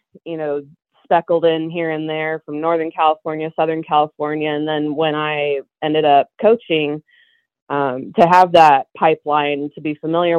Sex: female